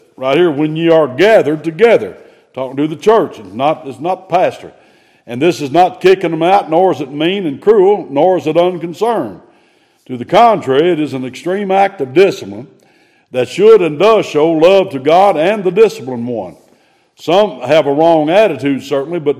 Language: English